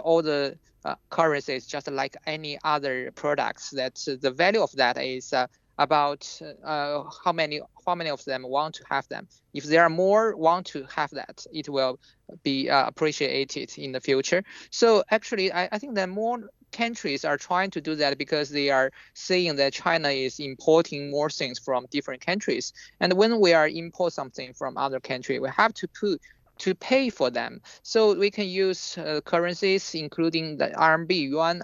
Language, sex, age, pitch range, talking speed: English, male, 20-39, 145-185 Hz, 185 wpm